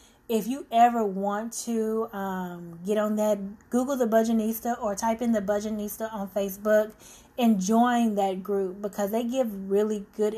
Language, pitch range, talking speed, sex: English, 205-240 Hz, 160 wpm, female